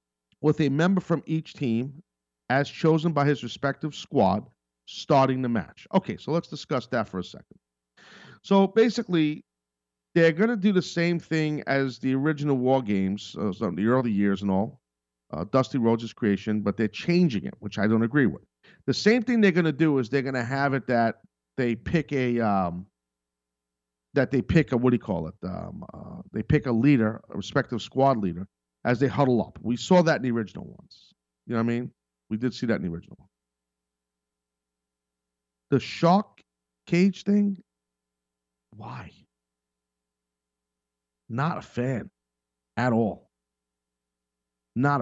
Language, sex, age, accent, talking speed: English, male, 50-69, American, 165 wpm